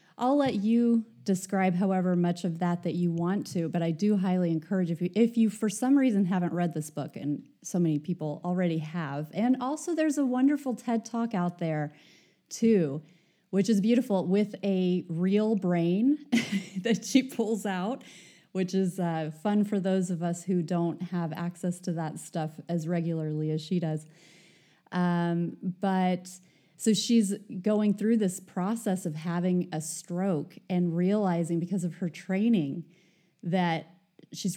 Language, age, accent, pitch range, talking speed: English, 30-49, American, 175-225 Hz, 165 wpm